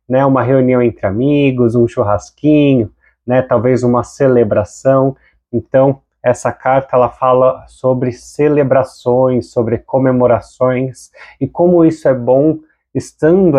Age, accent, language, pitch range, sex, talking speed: 30-49, Brazilian, Portuguese, 125-145 Hz, male, 110 wpm